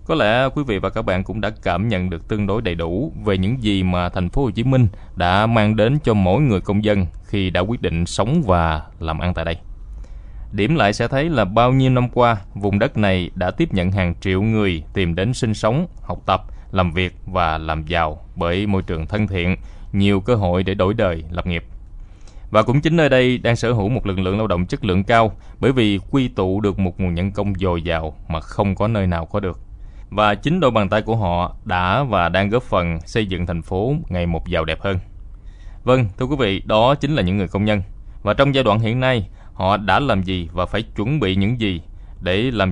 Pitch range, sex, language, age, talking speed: 90-110 Hz, male, Vietnamese, 20-39, 235 wpm